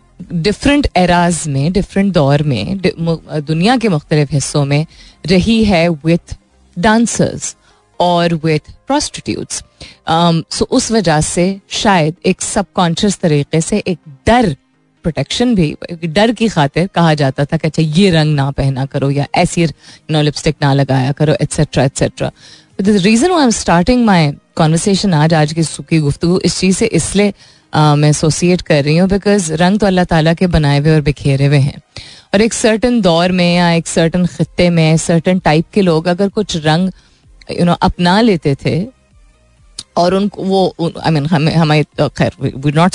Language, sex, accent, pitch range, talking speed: Hindi, female, native, 150-195 Hz, 150 wpm